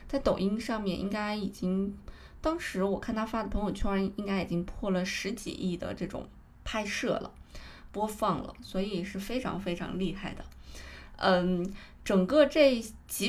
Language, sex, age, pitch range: Chinese, female, 20-39, 180-225 Hz